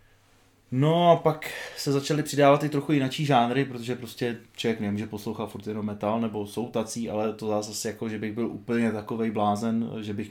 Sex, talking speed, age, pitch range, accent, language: male, 180 wpm, 20-39, 100-110 Hz, native, Czech